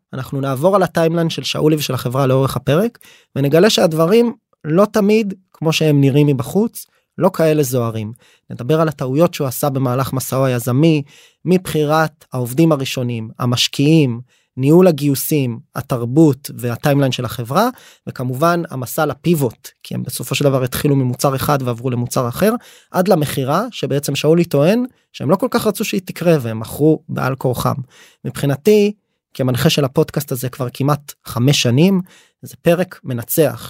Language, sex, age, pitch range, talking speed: Hebrew, male, 20-39, 130-170 Hz, 135 wpm